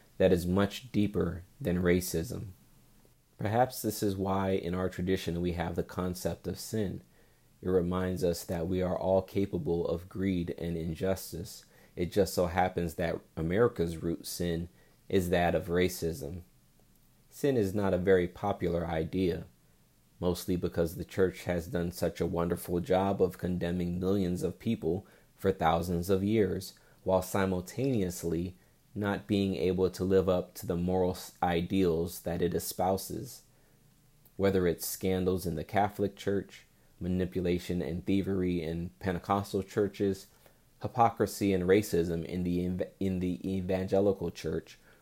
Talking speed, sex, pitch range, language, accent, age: 140 wpm, male, 85-95 Hz, English, American, 30-49